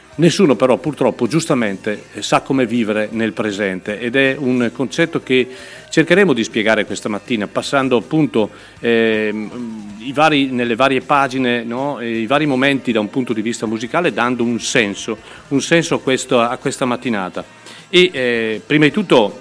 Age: 40-59